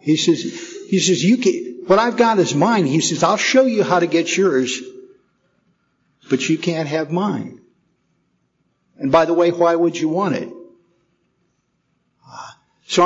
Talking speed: 160 wpm